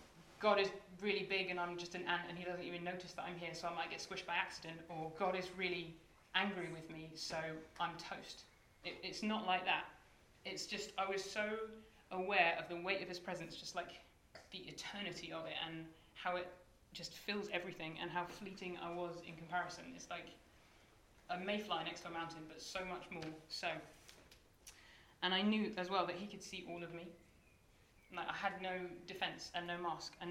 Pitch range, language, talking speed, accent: 175-195 Hz, English, 205 wpm, British